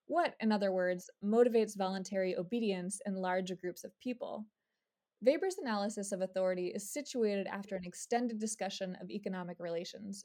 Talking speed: 145 wpm